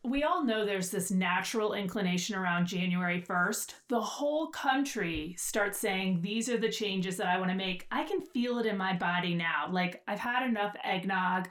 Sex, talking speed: female, 195 wpm